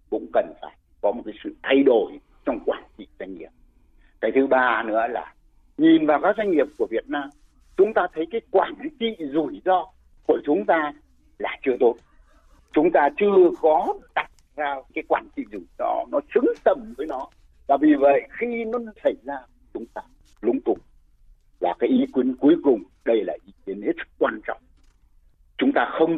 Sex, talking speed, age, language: male, 195 wpm, 60-79, Vietnamese